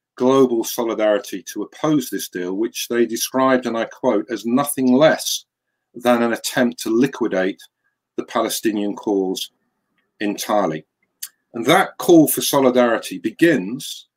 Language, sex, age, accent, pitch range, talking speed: English, male, 50-69, British, 115-140 Hz, 125 wpm